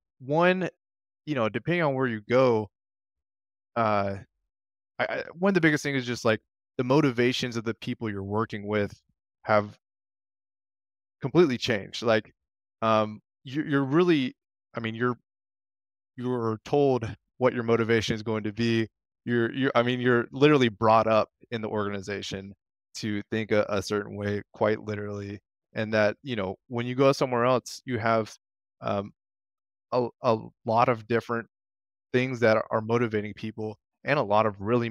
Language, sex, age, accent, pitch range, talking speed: English, male, 20-39, American, 100-125 Hz, 160 wpm